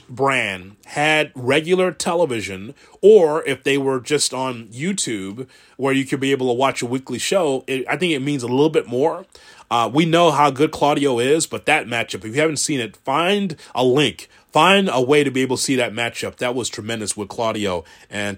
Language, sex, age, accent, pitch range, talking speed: English, male, 30-49, American, 120-145 Hz, 205 wpm